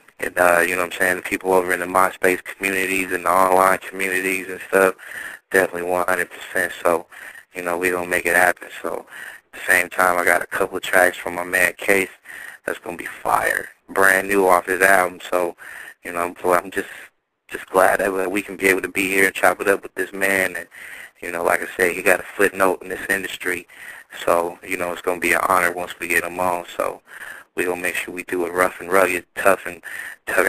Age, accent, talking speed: 20-39, American, 235 wpm